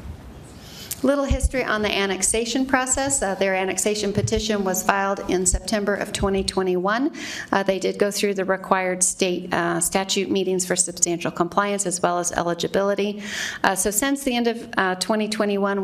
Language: English